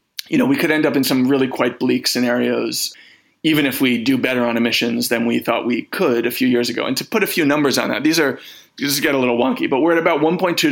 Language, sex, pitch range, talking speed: English, male, 125-160 Hz, 270 wpm